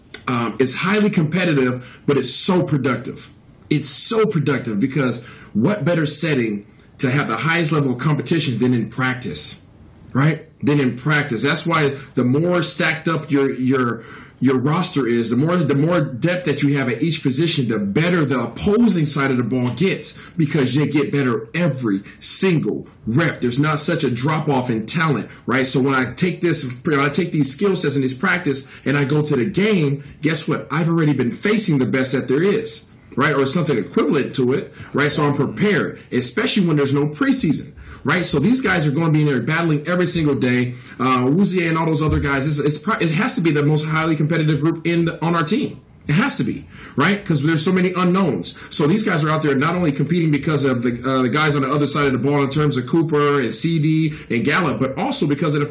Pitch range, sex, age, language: 130-165 Hz, male, 40-59, English